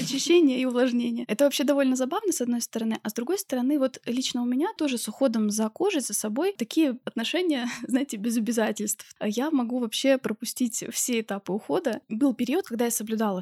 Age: 20-39